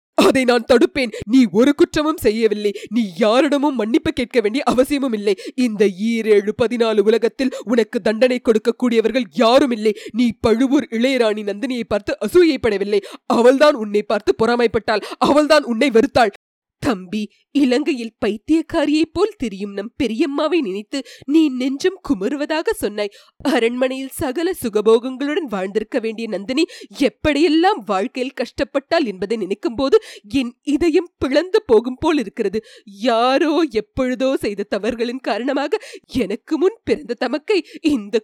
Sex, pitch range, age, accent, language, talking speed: female, 225-290 Hz, 20-39, native, Tamil, 120 wpm